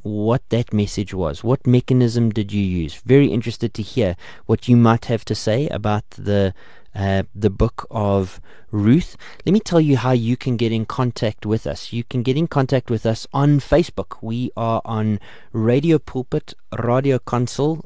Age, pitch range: 30-49, 105-130 Hz